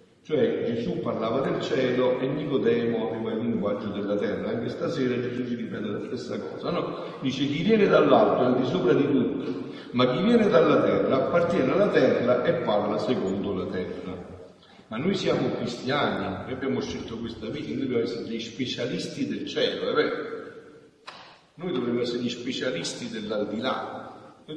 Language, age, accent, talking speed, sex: Italian, 50-69, native, 170 wpm, male